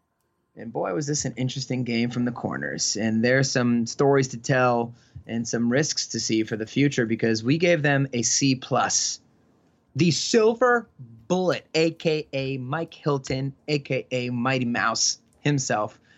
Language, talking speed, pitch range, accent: English, 150 wpm, 120-145 Hz, American